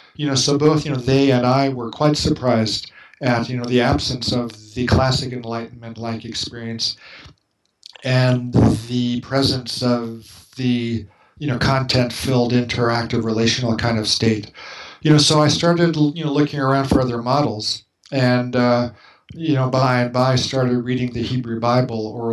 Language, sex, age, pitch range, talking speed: English, male, 50-69, 120-140 Hz, 165 wpm